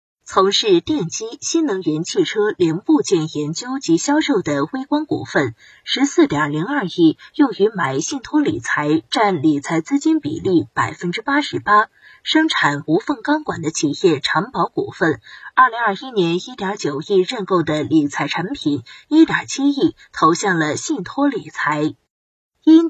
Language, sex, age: Chinese, female, 20-39